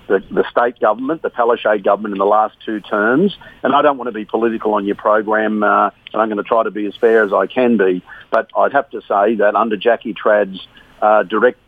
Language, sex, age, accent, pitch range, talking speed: English, male, 50-69, Australian, 105-115 Hz, 235 wpm